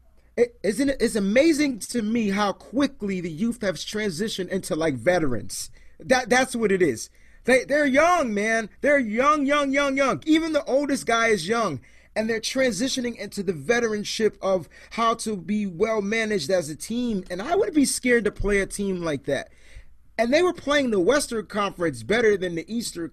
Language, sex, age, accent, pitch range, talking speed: English, male, 30-49, American, 165-230 Hz, 190 wpm